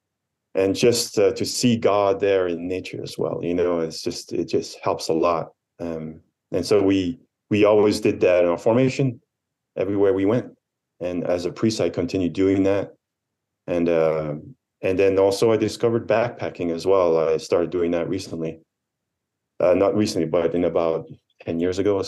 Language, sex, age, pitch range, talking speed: English, male, 30-49, 85-110 Hz, 180 wpm